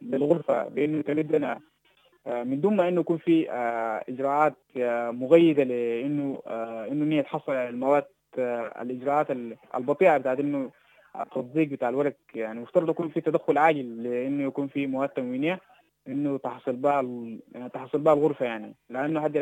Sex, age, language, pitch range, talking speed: male, 20-39, English, 125-160 Hz, 140 wpm